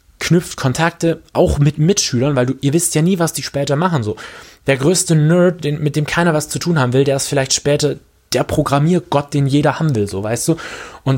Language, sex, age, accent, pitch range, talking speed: German, male, 20-39, German, 110-145 Hz, 225 wpm